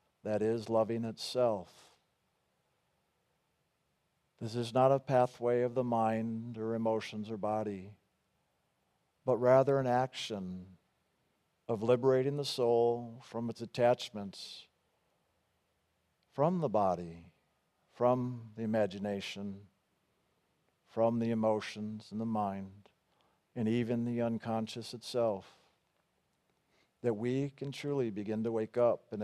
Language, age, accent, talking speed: English, 50-69, American, 110 wpm